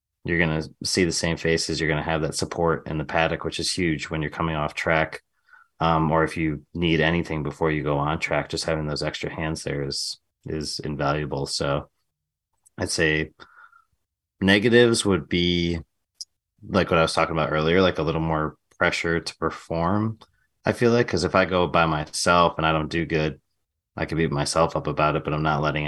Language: English